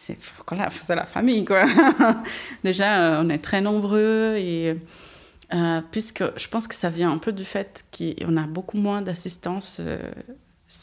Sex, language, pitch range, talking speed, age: female, French, 165-195 Hz, 155 wpm, 30-49